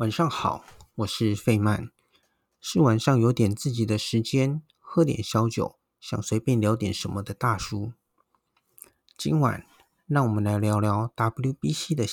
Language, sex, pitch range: Chinese, male, 110-140 Hz